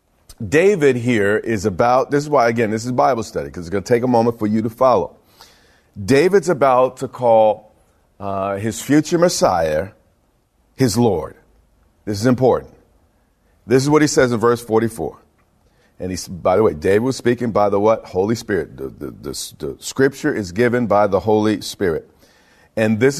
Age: 40-59